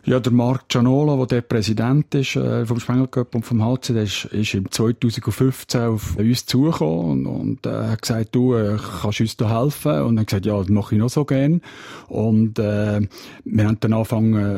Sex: male